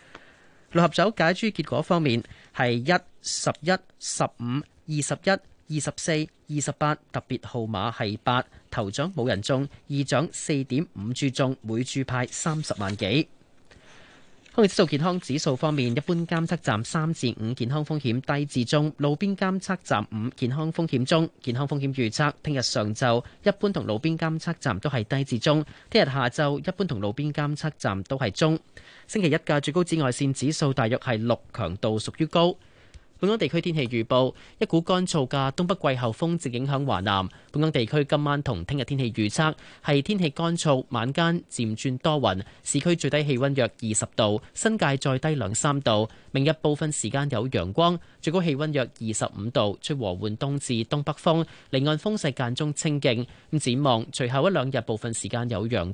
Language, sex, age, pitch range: Chinese, male, 30-49, 120-160 Hz